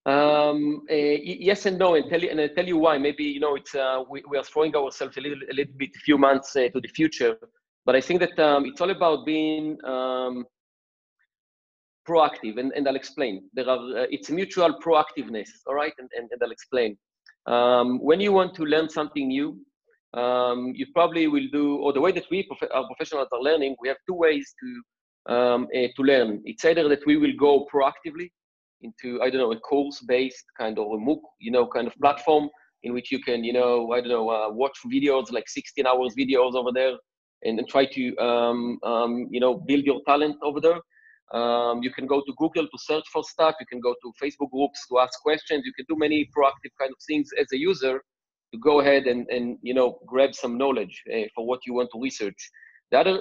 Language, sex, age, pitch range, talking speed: English, male, 40-59, 125-160 Hz, 220 wpm